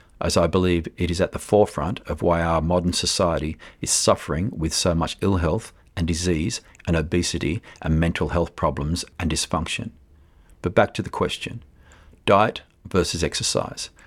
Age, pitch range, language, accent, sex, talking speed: 50-69, 80-90 Hz, English, Australian, male, 160 wpm